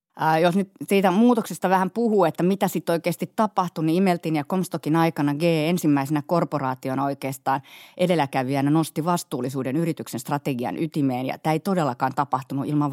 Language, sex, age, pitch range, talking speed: Finnish, female, 30-49, 135-165 Hz, 150 wpm